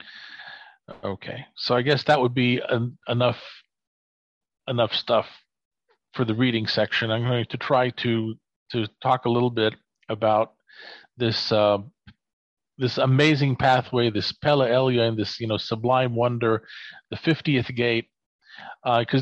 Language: English